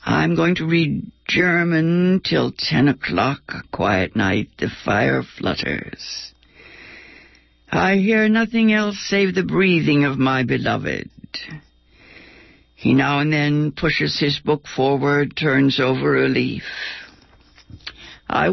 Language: English